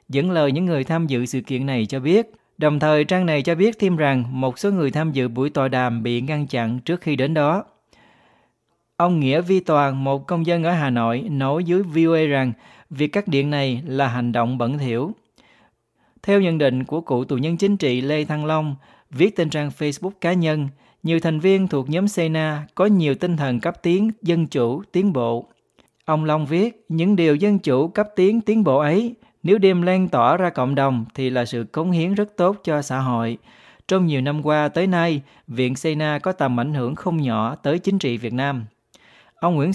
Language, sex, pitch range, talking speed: Vietnamese, male, 130-175 Hz, 215 wpm